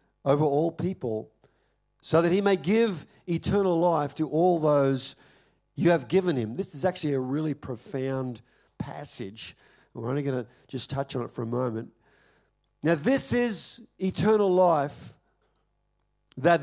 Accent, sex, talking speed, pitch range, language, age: Australian, male, 150 wpm, 140-190 Hz, English, 50-69